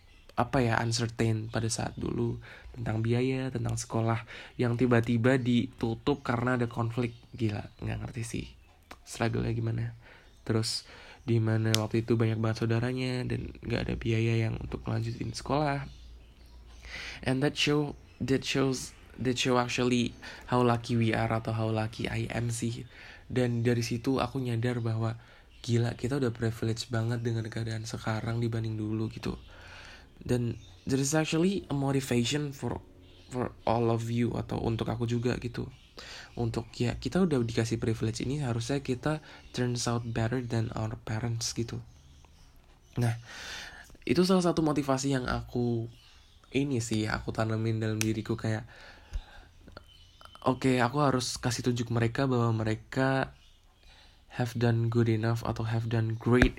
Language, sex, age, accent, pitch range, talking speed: Indonesian, male, 20-39, native, 110-125 Hz, 145 wpm